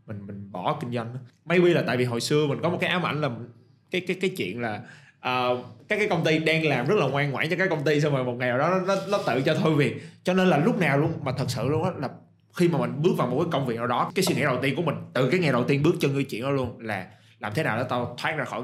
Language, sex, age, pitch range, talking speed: Vietnamese, male, 20-39, 115-150 Hz, 325 wpm